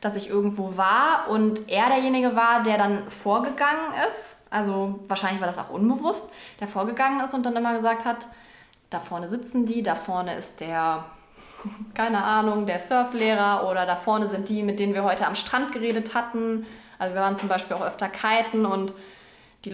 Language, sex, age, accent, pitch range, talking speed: German, female, 20-39, German, 190-230 Hz, 185 wpm